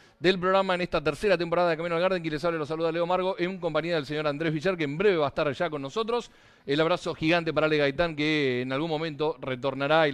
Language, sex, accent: Spanish, male, Argentinian